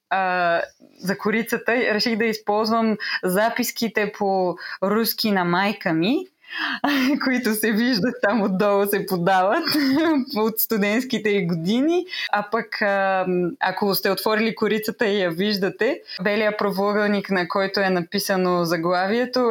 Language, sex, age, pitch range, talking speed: Bulgarian, female, 20-39, 185-230 Hz, 115 wpm